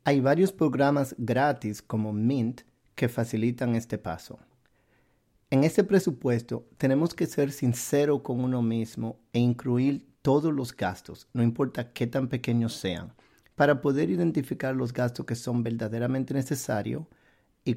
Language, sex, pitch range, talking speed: Spanish, male, 115-145 Hz, 140 wpm